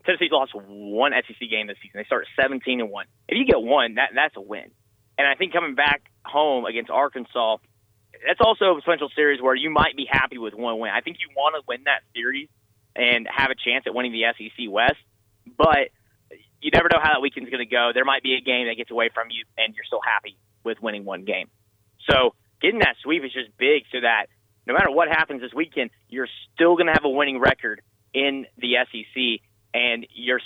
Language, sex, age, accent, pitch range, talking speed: English, male, 30-49, American, 110-135 Hz, 225 wpm